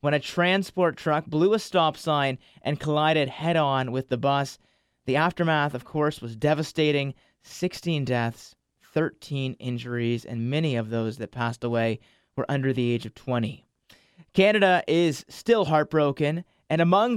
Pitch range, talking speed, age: 150-205 Hz, 150 wpm, 30-49